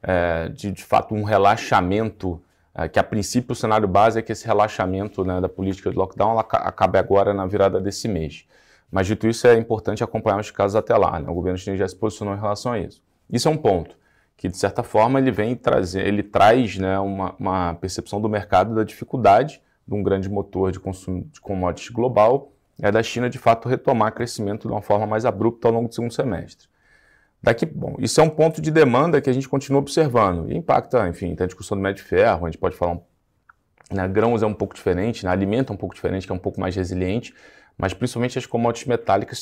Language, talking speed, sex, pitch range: Portuguese, 225 wpm, male, 95-120 Hz